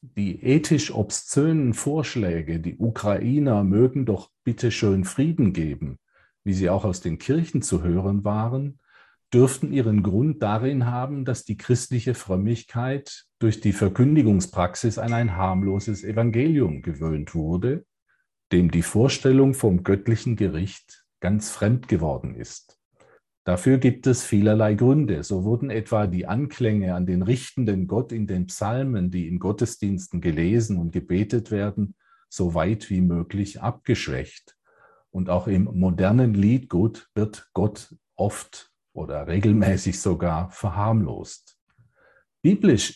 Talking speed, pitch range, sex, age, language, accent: 125 wpm, 95-125 Hz, male, 50-69, German, German